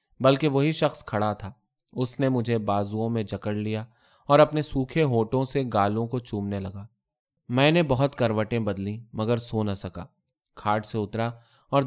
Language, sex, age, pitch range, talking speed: Urdu, male, 20-39, 105-130 Hz, 170 wpm